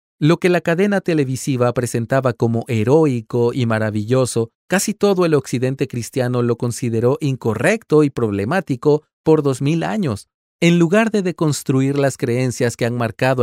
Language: Spanish